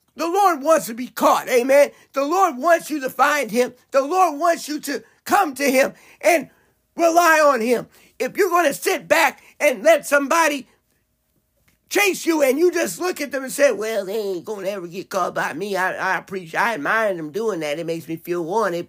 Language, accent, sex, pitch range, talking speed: English, American, male, 255-355 Hz, 215 wpm